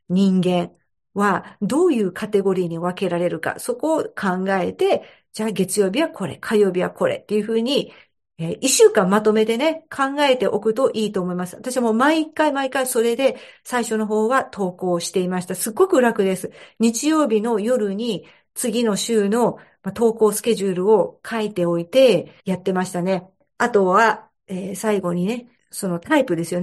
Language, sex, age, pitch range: Japanese, female, 50-69, 185-230 Hz